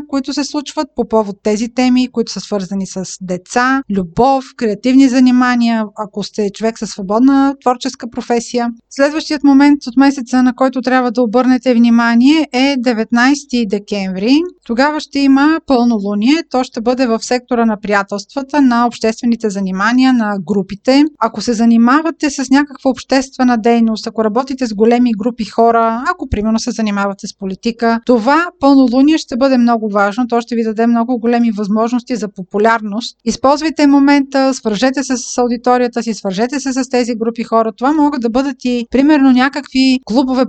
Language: Bulgarian